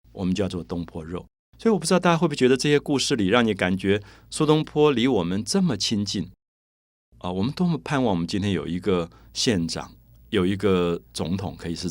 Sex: male